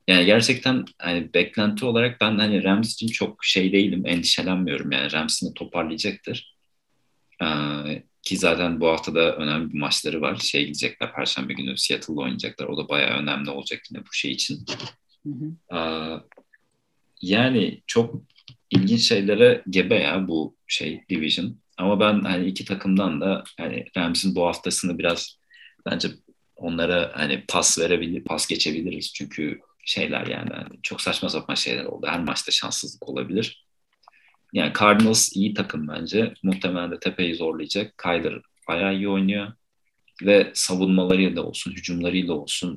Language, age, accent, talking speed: Turkish, 40-59, native, 140 wpm